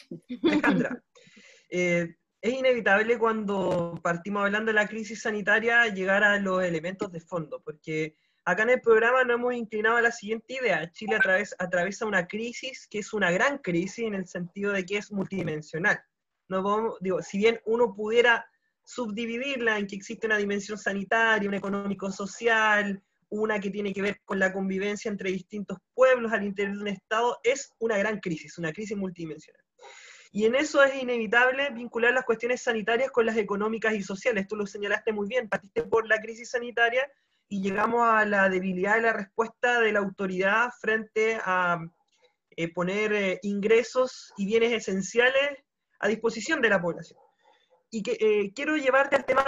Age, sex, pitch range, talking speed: 20-39, male, 195-235 Hz, 170 wpm